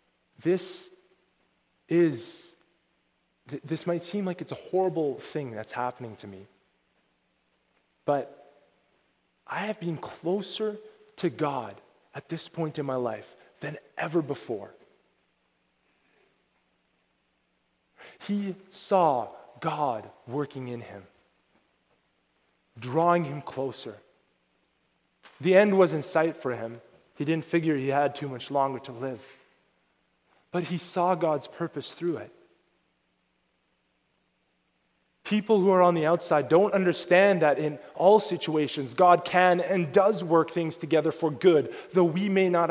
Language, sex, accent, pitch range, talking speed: English, male, American, 135-185 Hz, 125 wpm